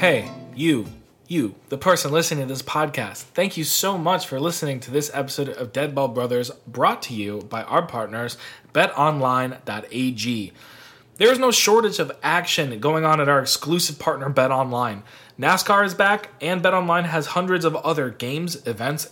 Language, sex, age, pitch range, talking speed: English, male, 20-39, 130-170 Hz, 160 wpm